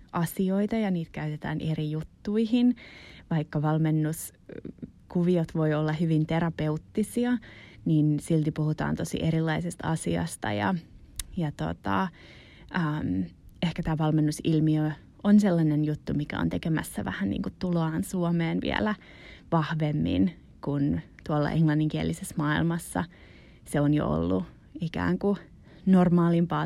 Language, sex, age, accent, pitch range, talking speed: Finnish, female, 20-39, native, 155-180 Hz, 95 wpm